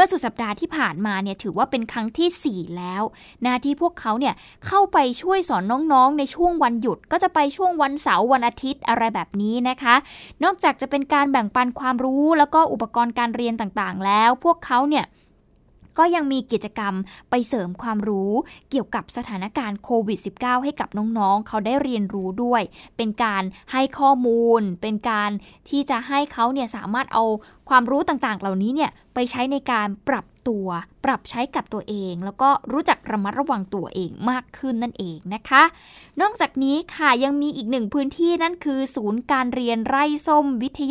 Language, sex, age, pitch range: Thai, female, 10-29, 215-285 Hz